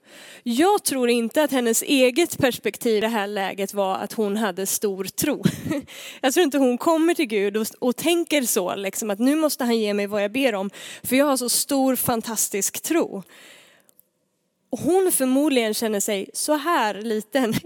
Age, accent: 20-39, native